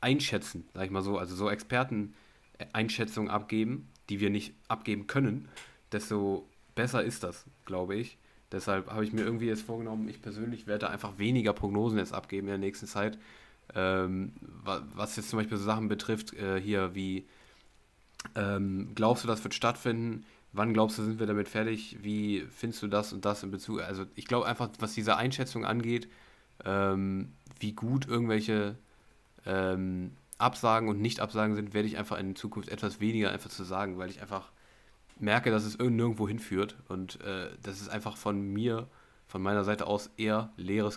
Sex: male